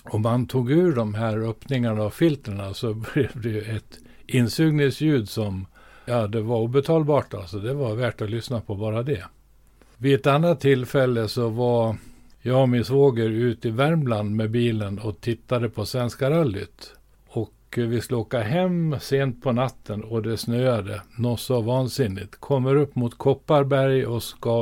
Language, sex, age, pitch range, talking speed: Swedish, male, 50-69, 110-130 Hz, 165 wpm